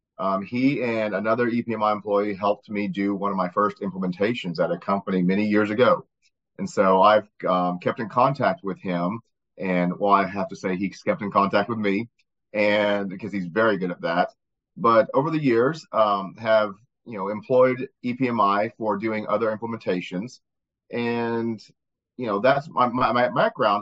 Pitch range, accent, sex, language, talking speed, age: 100-125 Hz, American, male, English, 175 wpm, 30-49